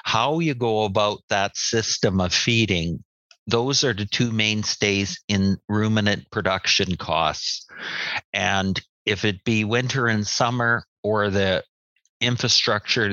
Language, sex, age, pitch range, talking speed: English, male, 50-69, 100-120 Hz, 125 wpm